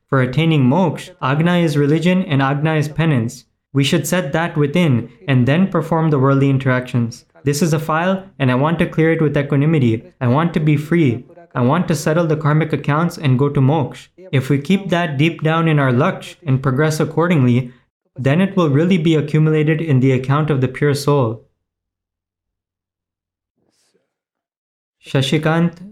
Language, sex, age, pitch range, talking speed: Gujarati, male, 20-39, 130-170 Hz, 175 wpm